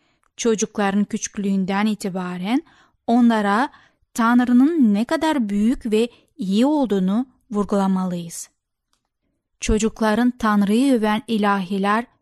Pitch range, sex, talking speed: 205-250 Hz, female, 80 wpm